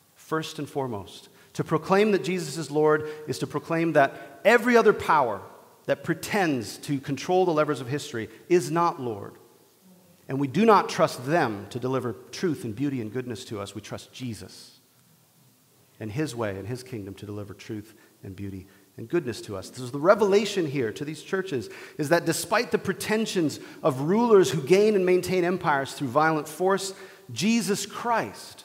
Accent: American